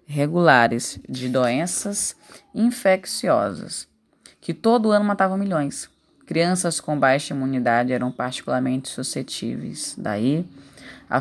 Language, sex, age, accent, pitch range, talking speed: Portuguese, female, 10-29, Brazilian, 130-165 Hz, 95 wpm